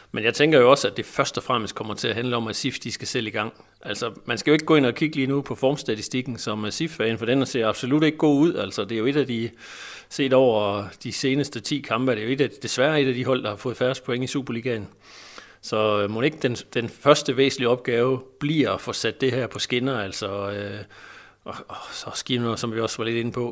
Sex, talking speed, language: male, 260 wpm, Danish